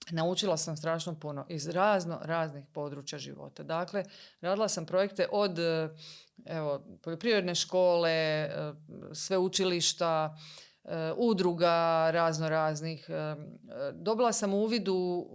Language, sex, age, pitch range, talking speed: Croatian, female, 40-59, 150-185 Hz, 95 wpm